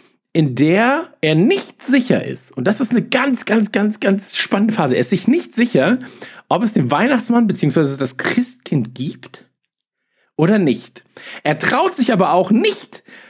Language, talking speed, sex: German, 165 wpm, male